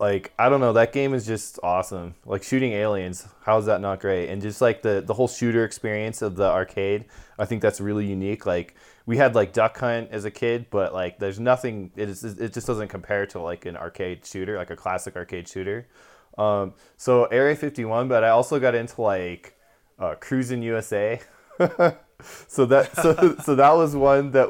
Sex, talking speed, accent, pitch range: male, 205 wpm, American, 100-125 Hz